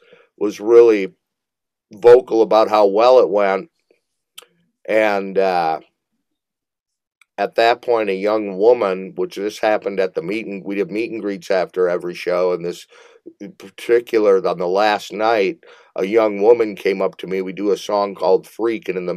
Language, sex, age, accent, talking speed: English, male, 50-69, American, 170 wpm